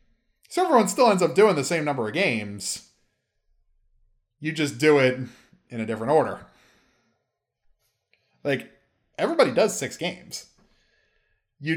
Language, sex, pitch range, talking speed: English, male, 115-155 Hz, 125 wpm